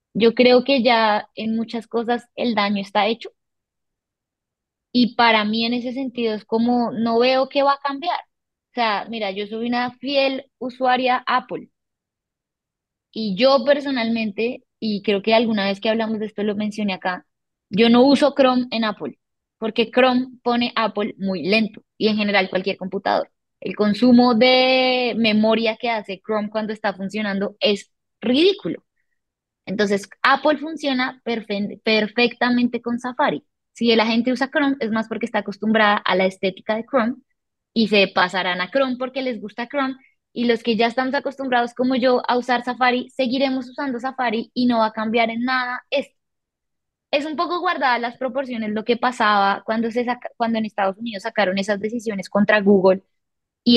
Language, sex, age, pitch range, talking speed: Spanish, female, 10-29, 215-255 Hz, 165 wpm